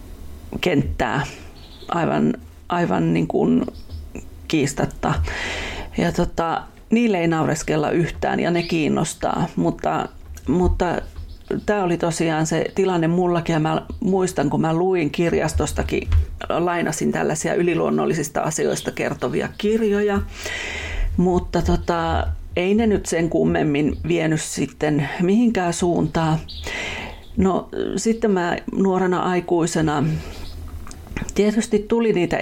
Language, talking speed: Finnish, 100 wpm